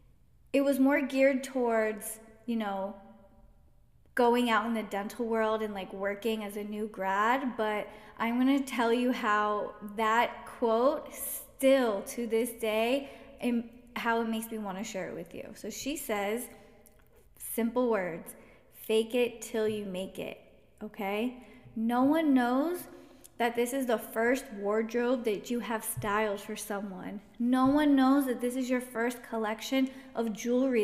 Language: English